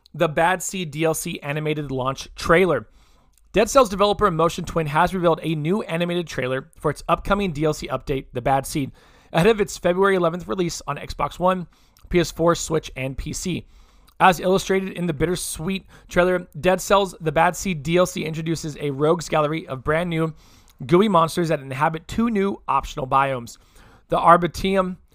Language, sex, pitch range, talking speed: English, male, 150-190 Hz, 160 wpm